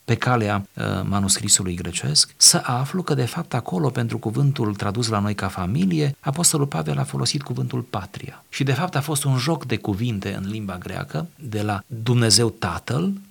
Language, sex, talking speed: Romanian, male, 175 wpm